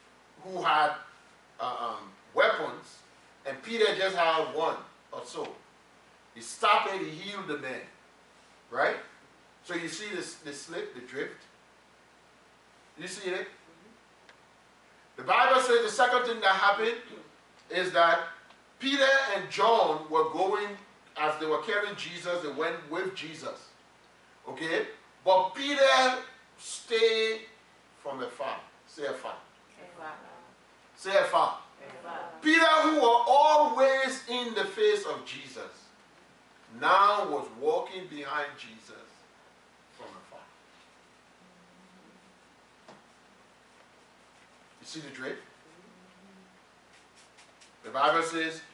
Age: 40-59